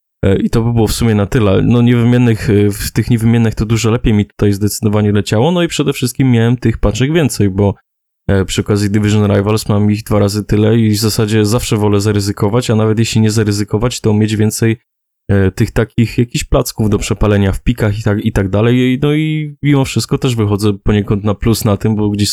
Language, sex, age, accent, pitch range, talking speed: Polish, male, 20-39, native, 105-120 Hz, 205 wpm